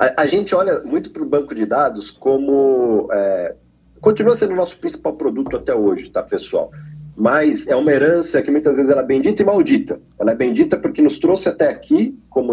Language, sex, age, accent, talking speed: Portuguese, male, 40-59, Brazilian, 200 wpm